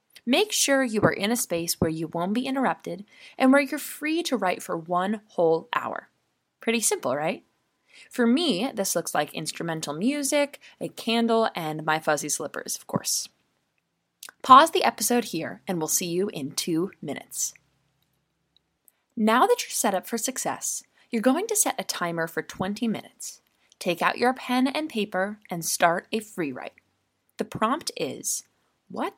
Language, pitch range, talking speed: English, 175-270 Hz, 170 wpm